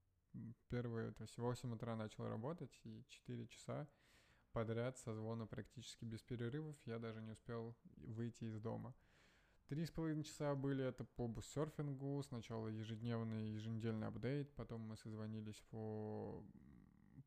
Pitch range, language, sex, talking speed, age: 110-120 Hz, Russian, male, 125 wpm, 20-39